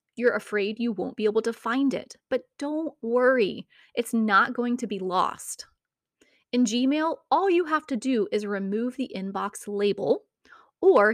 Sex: female